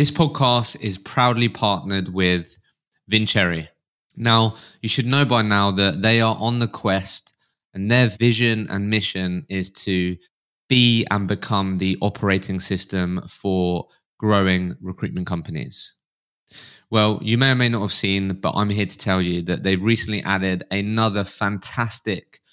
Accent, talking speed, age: British, 150 wpm, 20-39